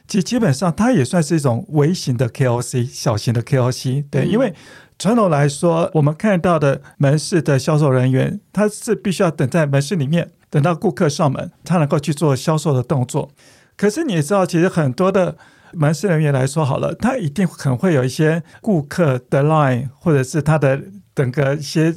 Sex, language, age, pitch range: male, Chinese, 50-69, 135-175 Hz